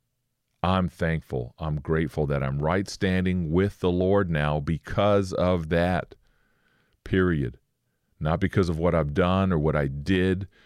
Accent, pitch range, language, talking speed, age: American, 80-110 Hz, English, 145 wpm, 40-59